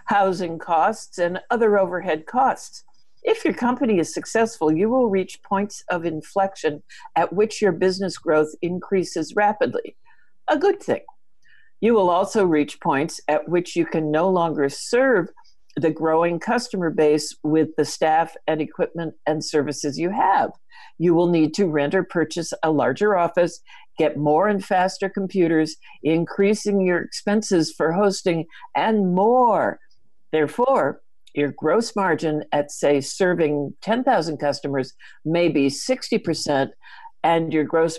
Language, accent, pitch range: English, American, 155-200 Hz